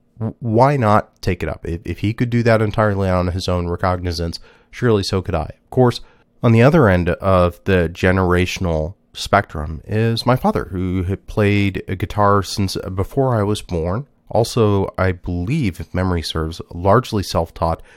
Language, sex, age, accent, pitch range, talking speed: English, male, 30-49, American, 90-110 Hz, 170 wpm